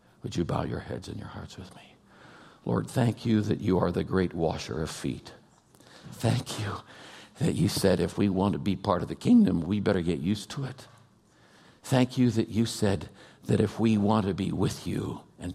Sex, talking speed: male, 210 wpm